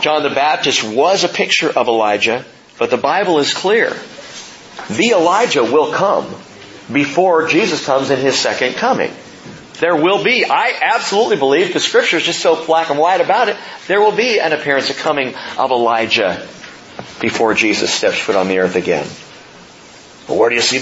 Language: English